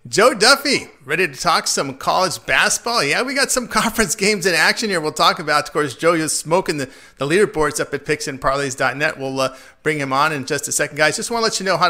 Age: 50-69